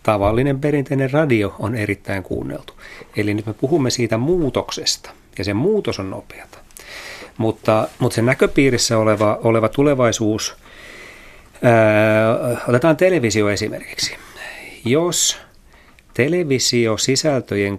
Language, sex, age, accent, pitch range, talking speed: Finnish, male, 40-59, native, 105-125 Hz, 100 wpm